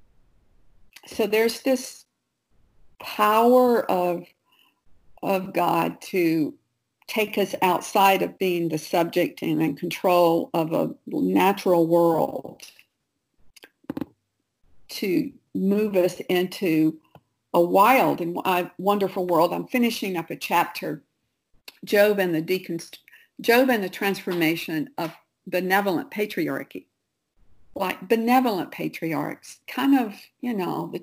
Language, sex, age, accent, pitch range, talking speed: English, female, 50-69, American, 175-240 Hz, 100 wpm